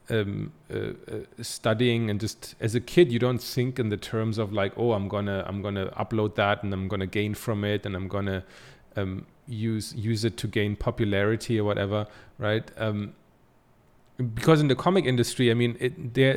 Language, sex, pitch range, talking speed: English, male, 100-120 Hz, 195 wpm